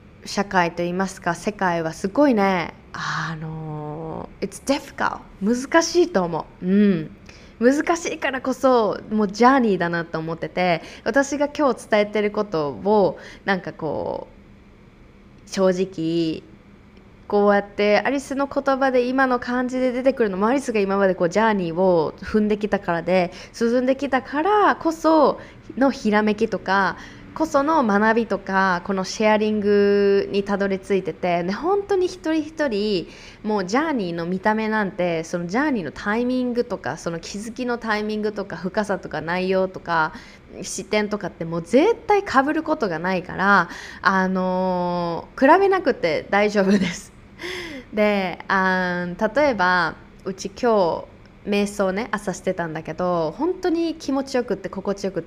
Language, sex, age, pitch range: Japanese, female, 20-39, 180-255 Hz